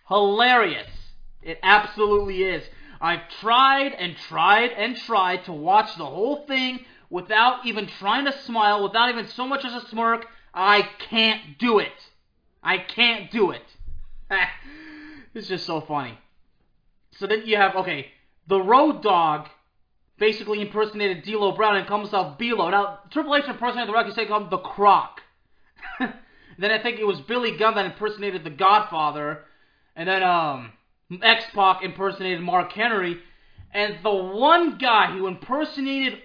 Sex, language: male, English